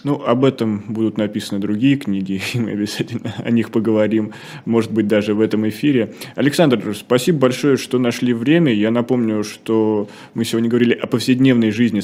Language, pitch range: Russian, 100-115 Hz